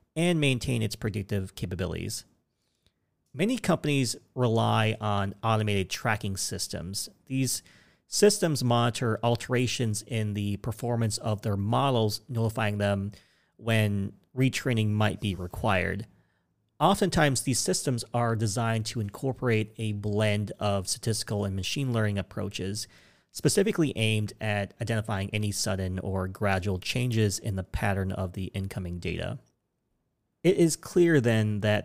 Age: 40-59